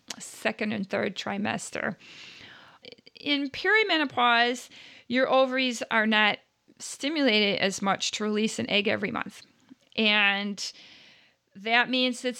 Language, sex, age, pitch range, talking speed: English, female, 40-59, 200-245 Hz, 110 wpm